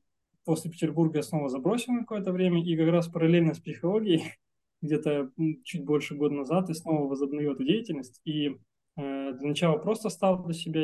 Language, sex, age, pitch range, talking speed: Russian, male, 20-39, 140-170 Hz, 170 wpm